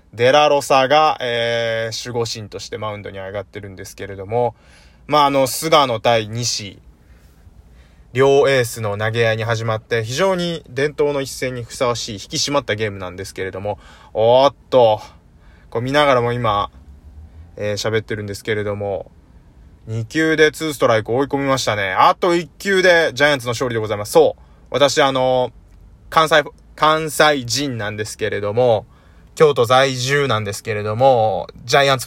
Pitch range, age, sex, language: 100-150 Hz, 20-39, male, Japanese